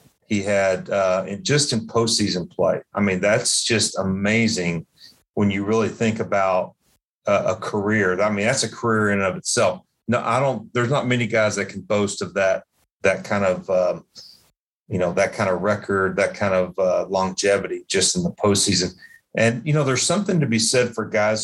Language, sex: English, male